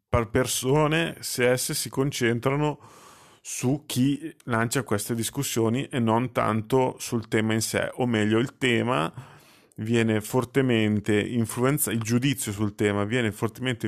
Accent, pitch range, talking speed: native, 105-125 Hz, 135 wpm